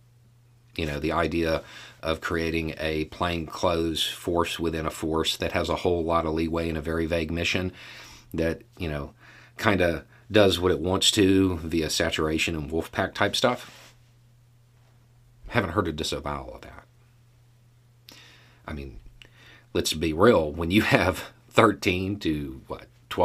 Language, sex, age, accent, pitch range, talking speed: English, male, 40-59, American, 80-120 Hz, 150 wpm